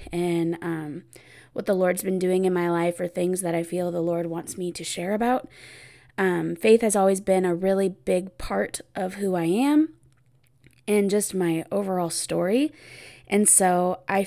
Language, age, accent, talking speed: English, 20-39, American, 180 wpm